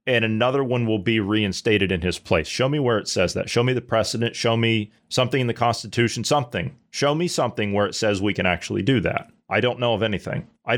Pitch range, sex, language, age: 110-140 Hz, male, English, 30-49